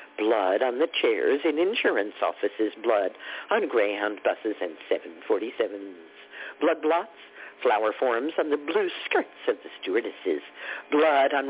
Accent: American